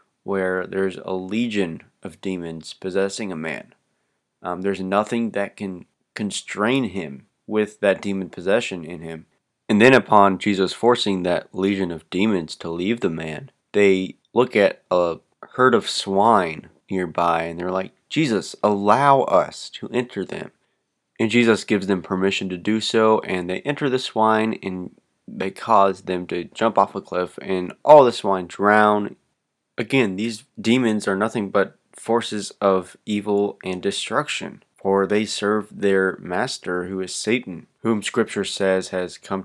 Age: 20-39